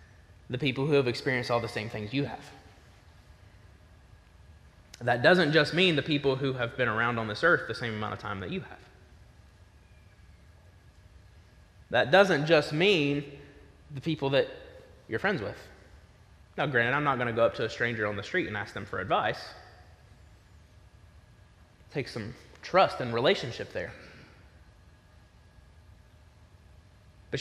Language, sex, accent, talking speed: English, male, American, 150 wpm